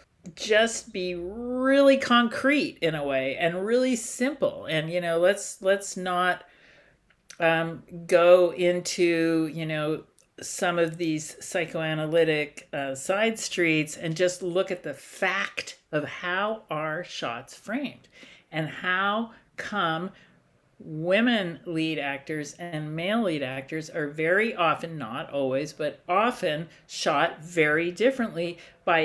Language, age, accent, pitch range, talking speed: English, 50-69, American, 155-195 Hz, 125 wpm